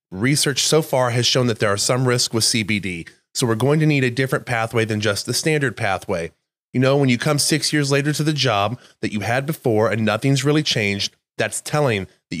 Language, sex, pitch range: English, male, 115-145 Hz